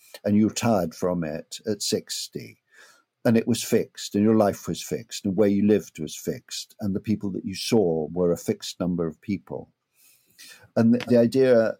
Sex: male